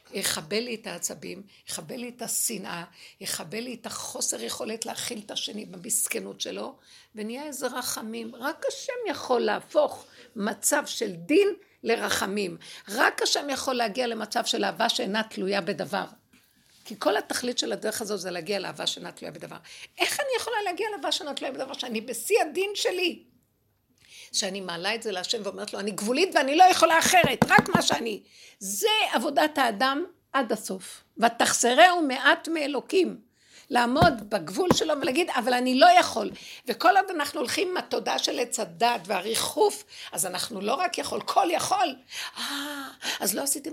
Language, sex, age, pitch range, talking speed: Hebrew, female, 60-79, 210-305 Hz, 145 wpm